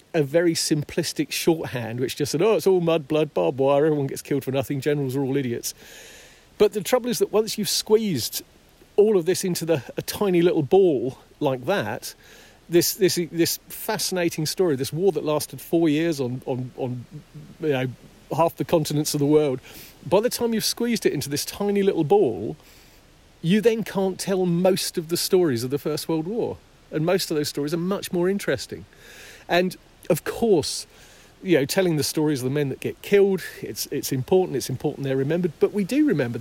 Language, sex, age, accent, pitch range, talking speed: English, male, 40-59, British, 145-190 Hz, 200 wpm